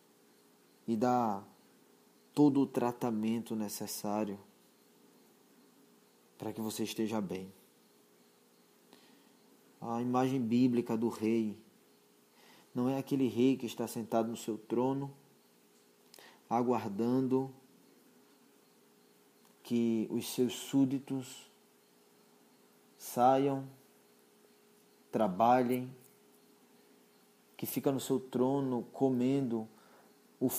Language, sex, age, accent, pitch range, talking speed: Portuguese, male, 20-39, Brazilian, 110-130 Hz, 80 wpm